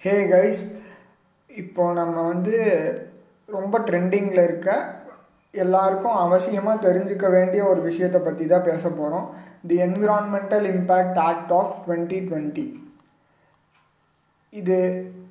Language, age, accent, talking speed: Tamil, 20-39, native, 100 wpm